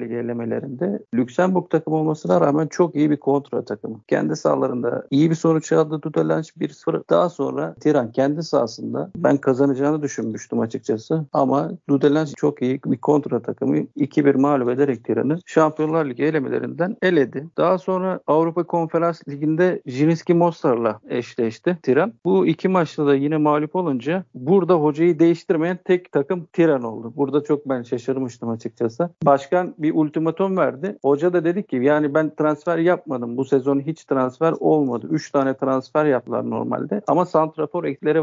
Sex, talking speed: male, 150 wpm